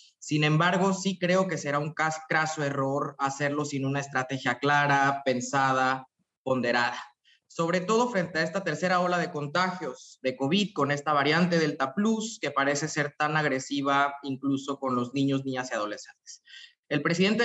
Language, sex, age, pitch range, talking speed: Spanish, male, 20-39, 135-165 Hz, 160 wpm